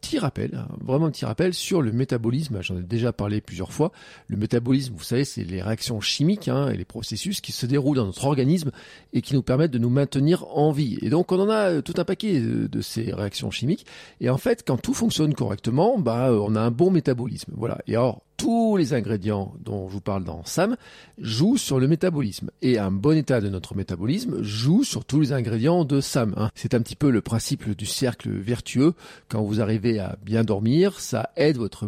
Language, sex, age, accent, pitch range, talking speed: French, male, 40-59, French, 110-160 Hz, 220 wpm